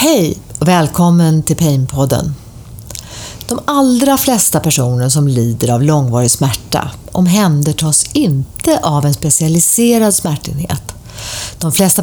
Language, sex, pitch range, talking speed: English, female, 130-185 Hz, 110 wpm